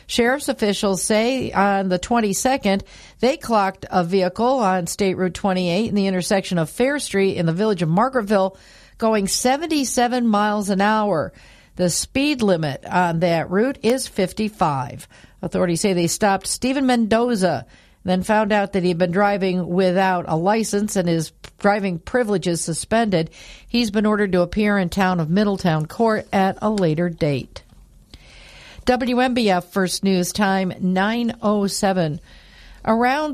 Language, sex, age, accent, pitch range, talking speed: English, female, 50-69, American, 185-230 Hz, 140 wpm